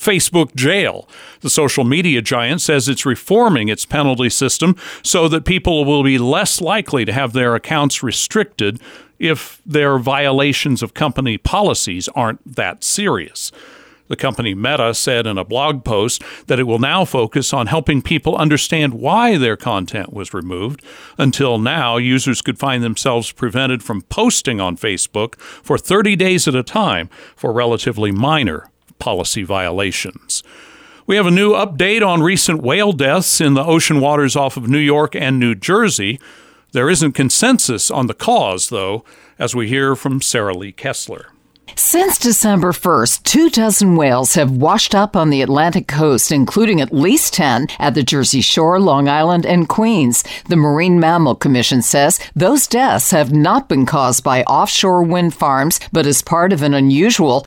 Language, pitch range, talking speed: English, 135-185 Hz, 165 wpm